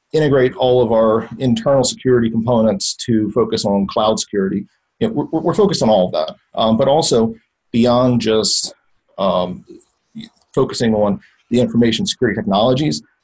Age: 40-59